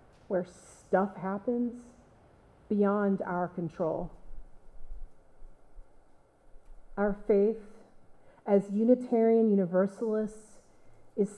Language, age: English, 40-59